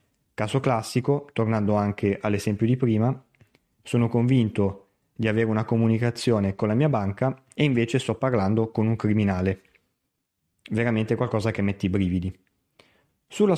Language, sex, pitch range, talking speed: Italian, male, 105-135 Hz, 135 wpm